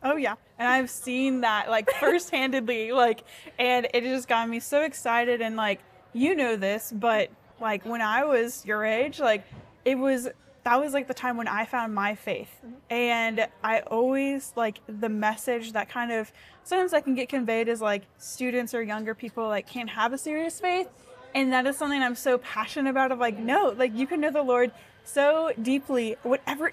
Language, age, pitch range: English, 10-29, 220-265 Hz